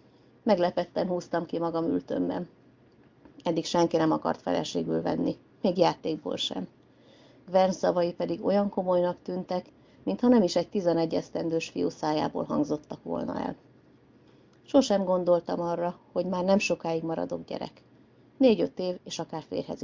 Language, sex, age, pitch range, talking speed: Hungarian, female, 30-49, 165-185 Hz, 135 wpm